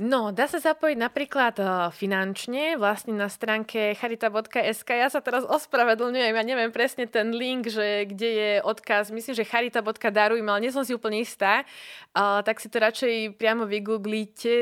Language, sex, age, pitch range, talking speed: Slovak, female, 20-39, 190-225 Hz, 165 wpm